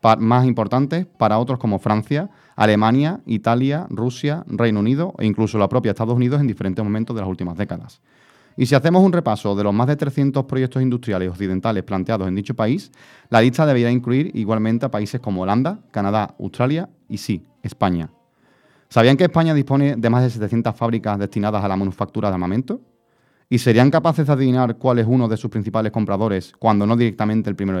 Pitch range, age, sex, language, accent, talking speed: 105-130 Hz, 30-49, male, Spanish, Spanish, 190 wpm